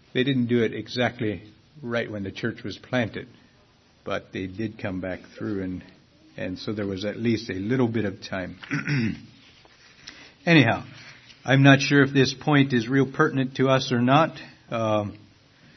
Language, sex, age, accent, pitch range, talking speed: English, male, 60-79, American, 105-130 Hz, 170 wpm